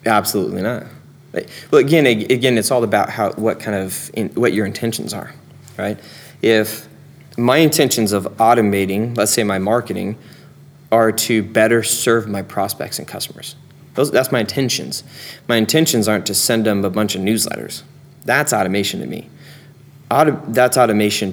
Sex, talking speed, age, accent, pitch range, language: male, 160 wpm, 20-39, American, 110-140 Hz, English